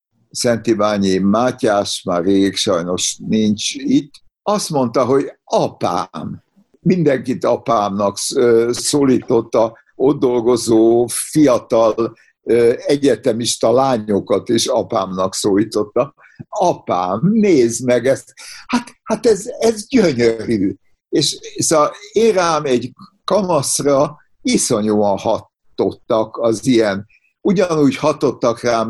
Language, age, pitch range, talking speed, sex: Hungarian, 60-79, 110-145 Hz, 95 wpm, male